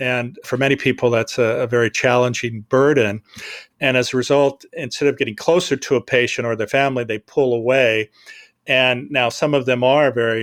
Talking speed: 195 wpm